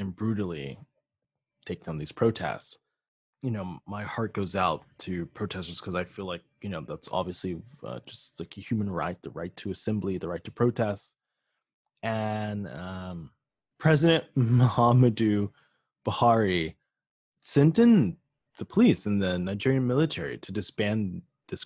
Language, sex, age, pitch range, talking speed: English, male, 20-39, 95-125 Hz, 145 wpm